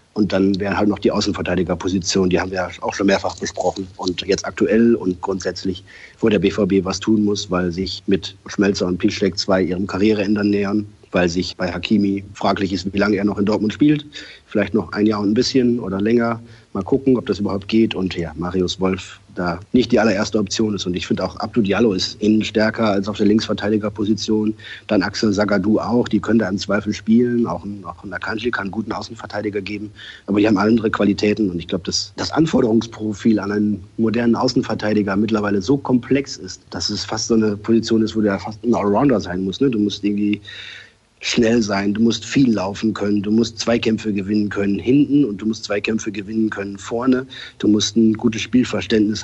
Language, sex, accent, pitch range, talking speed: German, male, German, 95-110 Hz, 200 wpm